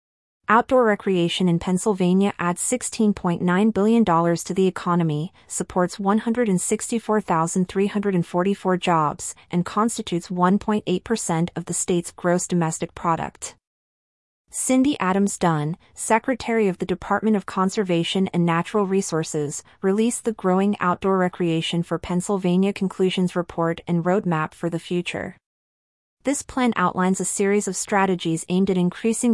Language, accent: English, American